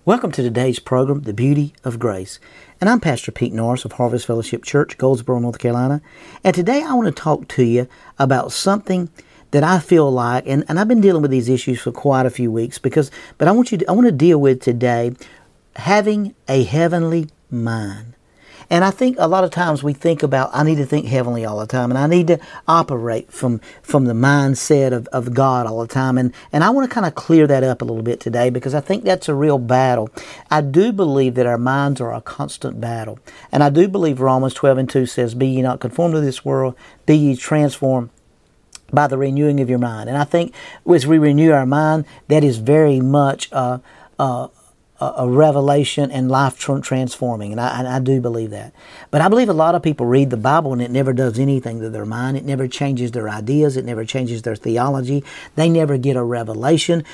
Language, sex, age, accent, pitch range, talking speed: English, male, 50-69, American, 125-155 Hz, 220 wpm